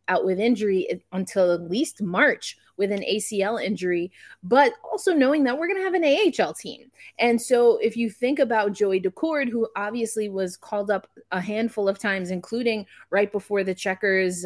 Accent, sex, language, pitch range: American, female, English, 190-235 Hz